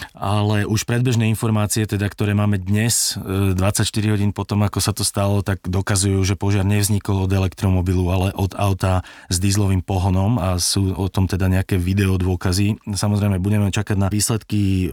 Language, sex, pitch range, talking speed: Slovak, male, 95-105 Hz, 165 wpm